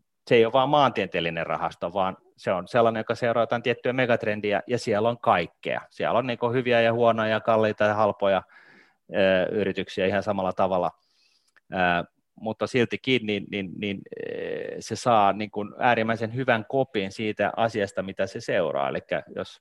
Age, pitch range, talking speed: 30-49, 100-115 Hz, 160 wpm